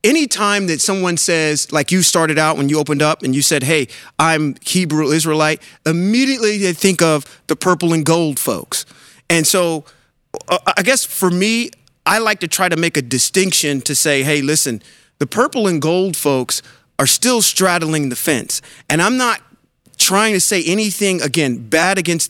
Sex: male